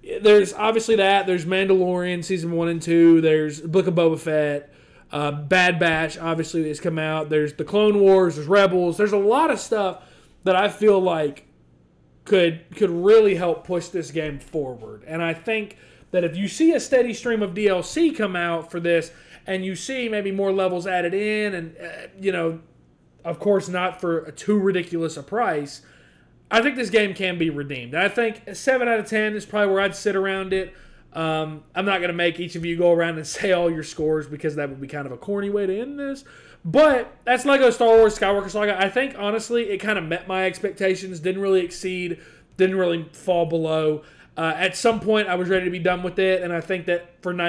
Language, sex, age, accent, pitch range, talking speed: English, male, 30-49, American, 160-205 Hz, 215 wpm